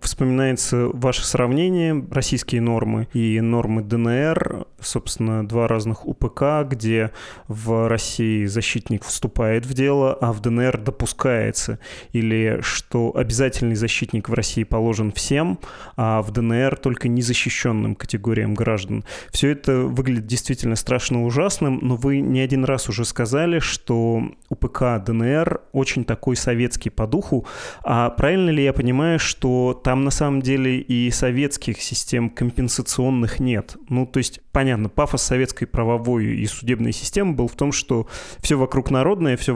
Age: 20-39